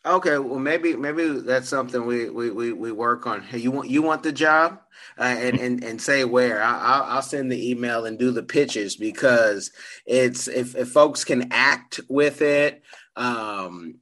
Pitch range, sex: 125-155 Hz, male